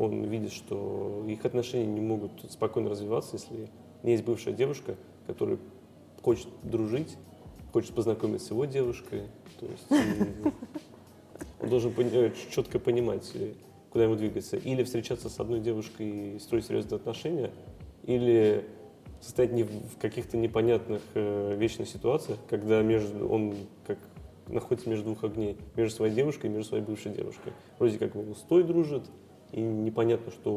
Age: 20-39